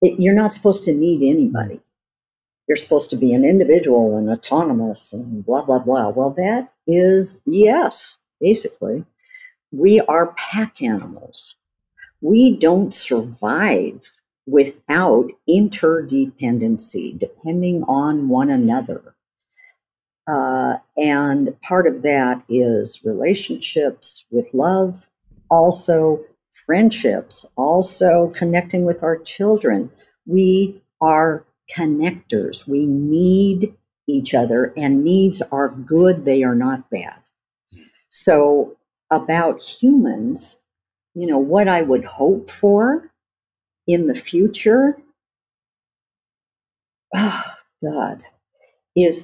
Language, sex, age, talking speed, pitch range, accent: English, female, 50-69, 100 wpm, 140-205 Hz, American